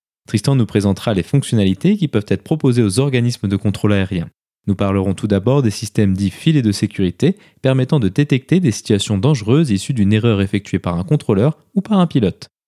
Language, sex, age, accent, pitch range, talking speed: French, male, 20-39, French, 100-135 Hz, 195 wpm